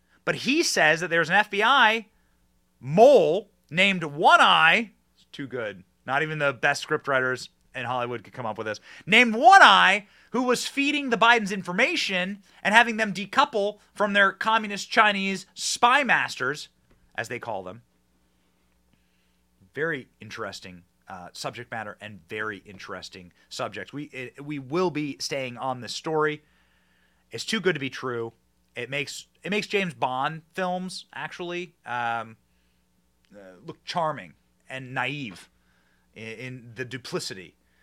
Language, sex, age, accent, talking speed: English, male, 30-49, American, 140 wpm